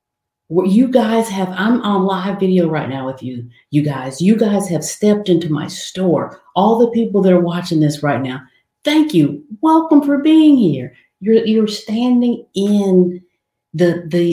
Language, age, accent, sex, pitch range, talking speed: English, 50-69, American, female, 160-225 Hz, 170 wpm